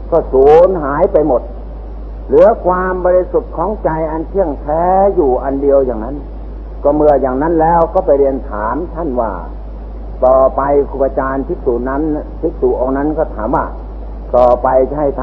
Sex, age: male, 60-79